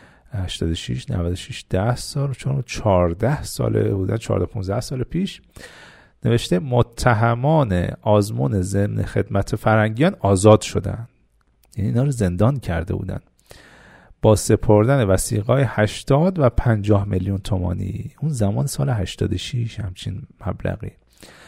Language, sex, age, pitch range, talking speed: Persian, male, 40-59, 100-140 Hz, 110 wpm